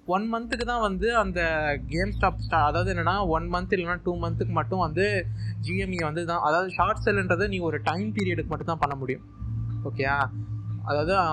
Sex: male